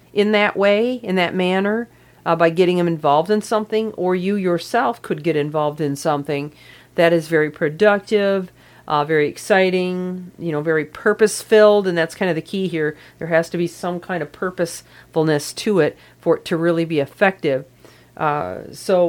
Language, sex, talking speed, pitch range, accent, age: English, female, 180 wpm, 155-190 Hz, American, 40-59